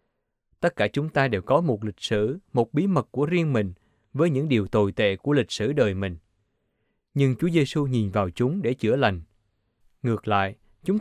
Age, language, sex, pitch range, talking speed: 20-39, Vietnamese, male, 105-145 Hz, 200 wpm